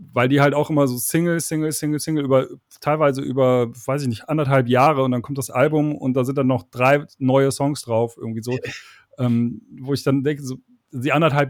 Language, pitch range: German, 125-150 Hz